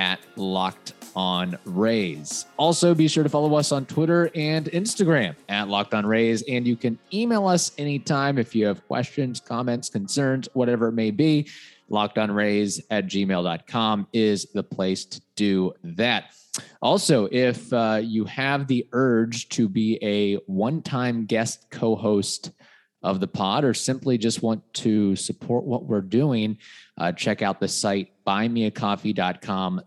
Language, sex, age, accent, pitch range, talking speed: English, male, 20-39, American, 100-130 Hz, 155 wpm